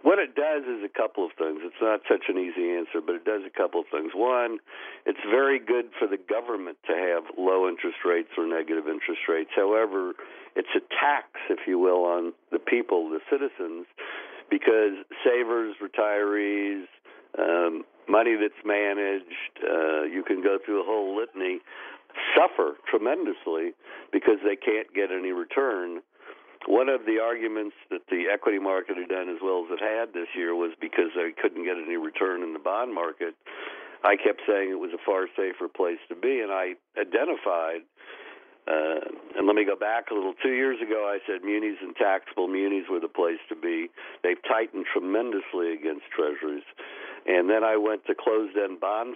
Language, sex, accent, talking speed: English, male, American, 180 wpm